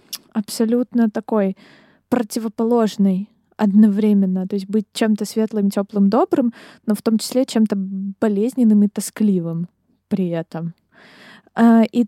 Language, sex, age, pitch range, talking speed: Ukrainian, female, 20-39, 210-250 Hz, 110 wpm